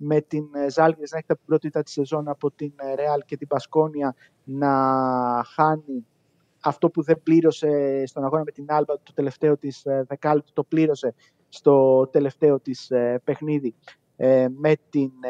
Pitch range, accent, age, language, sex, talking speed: 140-170 Hz, native, 30-49, Greek, male, 155 wpm